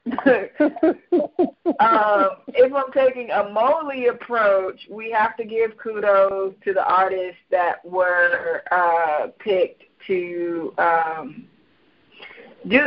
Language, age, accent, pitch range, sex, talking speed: English, 20-39, American, 185-275 Hz, female, 105 wpm